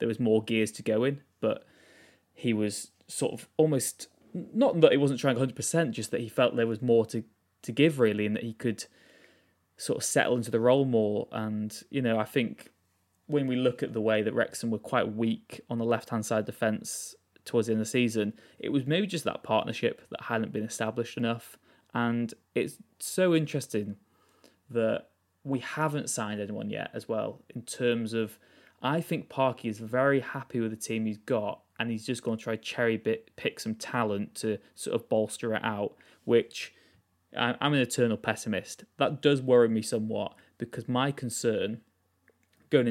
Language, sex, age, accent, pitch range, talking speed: English, male, 20-39, British, 110-125 Hz, 185 wpm